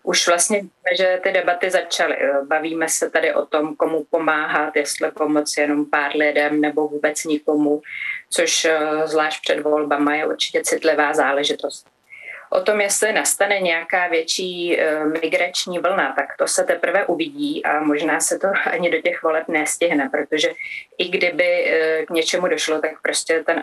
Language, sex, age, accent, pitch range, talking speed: Czech, female, 30-49, native, 150-180 Hz, 150 wpm